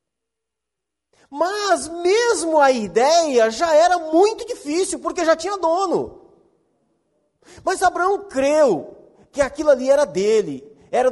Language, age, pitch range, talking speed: Portuguese, 40-59, 210-325 Hz, 115 wpm